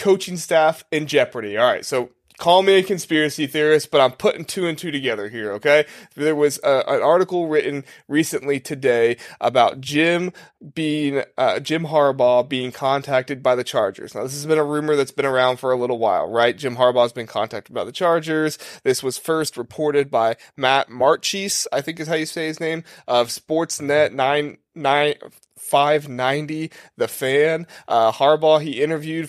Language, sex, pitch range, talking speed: English, male, 125-160 Hz, 180 wpm